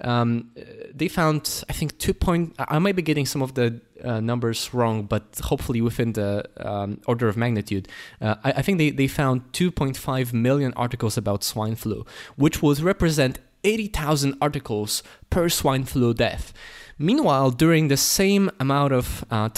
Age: 20-39